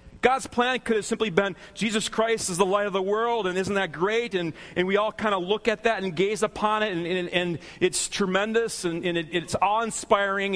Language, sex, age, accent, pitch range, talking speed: English, male, 40-59, American, 160-215 Hz, 235 wpm